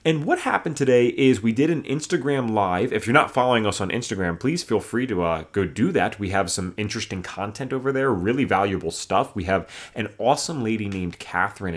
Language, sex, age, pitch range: English, male, 30-49, 95-130 Hz